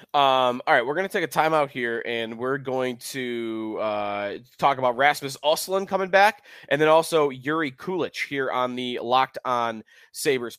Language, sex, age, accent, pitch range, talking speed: English, male, 20-39, American, 125-155 Hz, 180 wpm